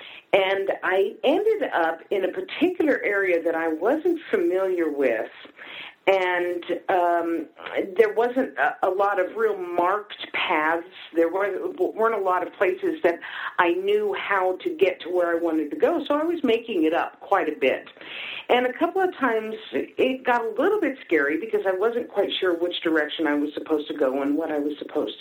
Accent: American